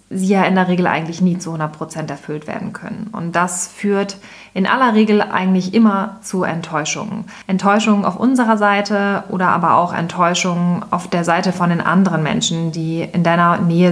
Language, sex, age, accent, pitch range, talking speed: German, female, 30-49, German, 180-210 Hz, 175 wpm